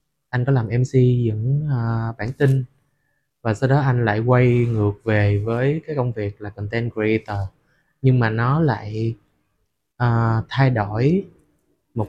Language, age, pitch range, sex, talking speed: Vietnamese, 20-39, 110-140 Hz, male, 145 wpm